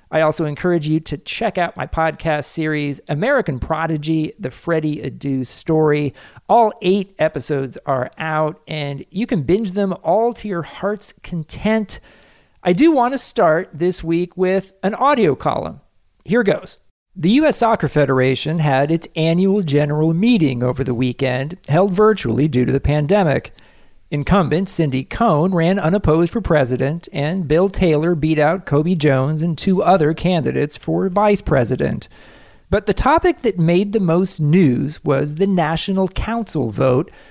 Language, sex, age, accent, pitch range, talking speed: English, male, 40-59, American, 145-190 Hz, 155 wpm